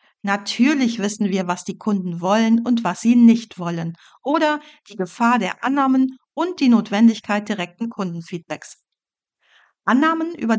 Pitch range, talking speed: 205-250 Hz, 135 wpm